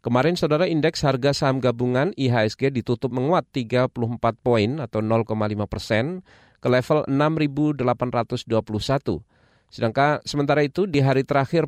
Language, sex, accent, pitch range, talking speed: Indonesian, male, native, 115-145 Hz, 120 wpm